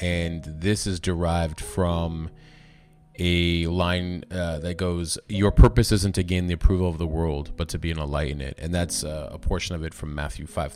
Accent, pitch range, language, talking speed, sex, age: American, 80-100 Hz, English, 210 wpm, male, 30-49